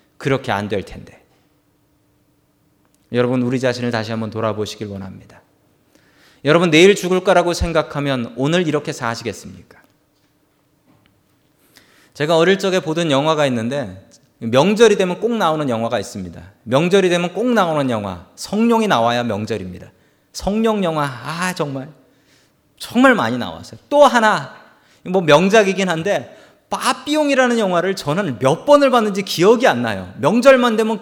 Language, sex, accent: Korean, male, native